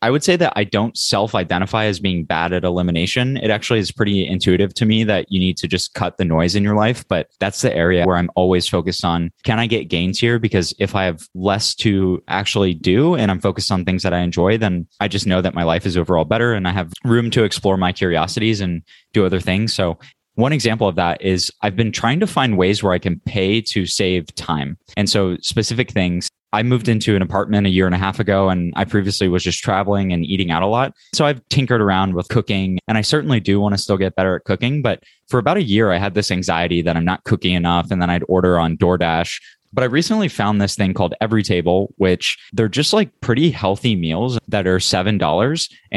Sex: male